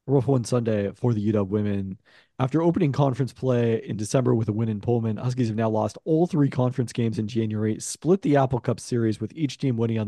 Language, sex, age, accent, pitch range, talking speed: English, male, 40-59, American, 110-130 Hz, 230 wpm